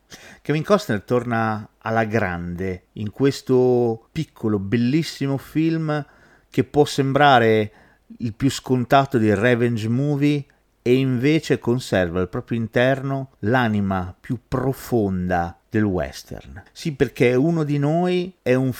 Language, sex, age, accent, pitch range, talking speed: Italian, male, 40-59, native, 100-130 Hz, 120 wpm